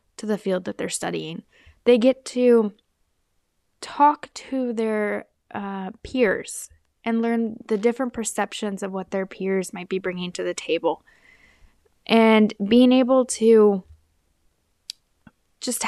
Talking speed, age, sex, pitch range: 125 wpm, 10-29, female, 190-240 Hz